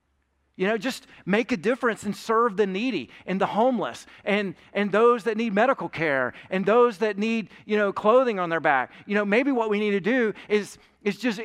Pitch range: 180-235 Hz